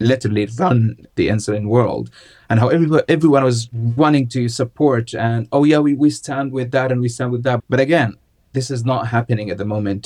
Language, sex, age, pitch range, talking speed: English, male, 30-49, 115-135 Hz, 205 wpm